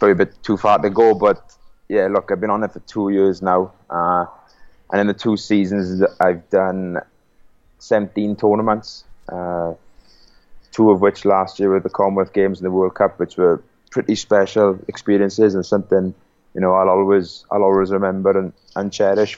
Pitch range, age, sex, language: 90-100 Hz, 20-39, male, English